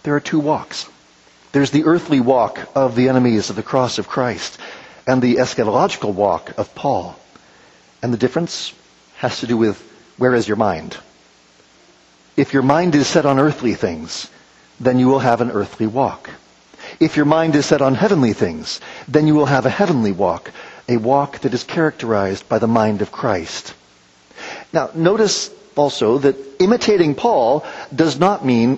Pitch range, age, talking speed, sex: 110-165 Hz, 40-59, 170 wpm, male